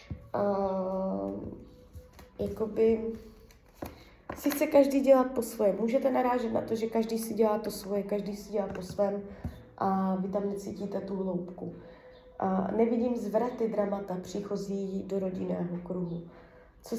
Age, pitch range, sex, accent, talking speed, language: 20-39, 195-235 Hz, female, native, 130 wpm, Czech